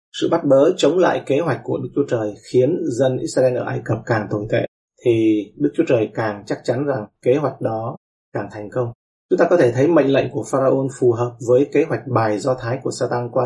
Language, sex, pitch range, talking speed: Vietnamese, male, 115-130 Hz, 240 wpm